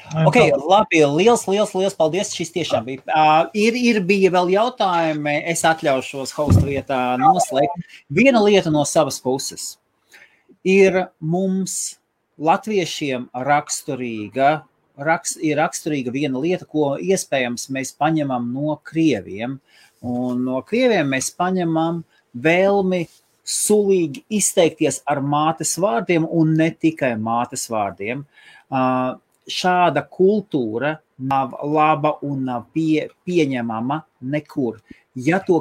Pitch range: 130-175 Hz